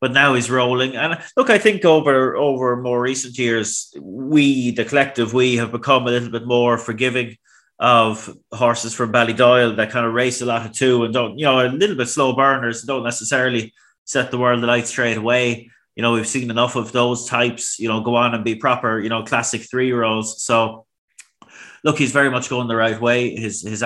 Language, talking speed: English, 210 wpm